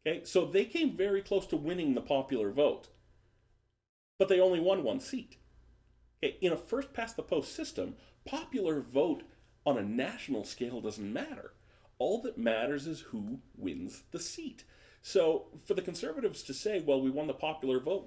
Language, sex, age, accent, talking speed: English, male, 40-59, American, 165 wpm